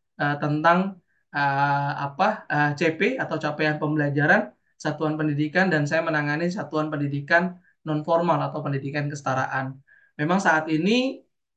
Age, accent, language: 20-39, native, Indonesian